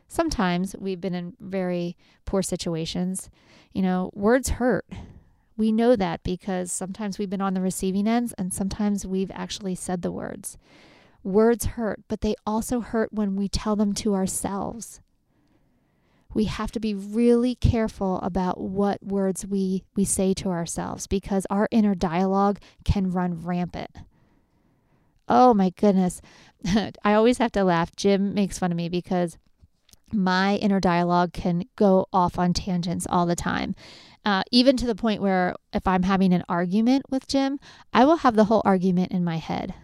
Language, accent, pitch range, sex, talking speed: English, American, 180-215 Hz, female, 165 wpm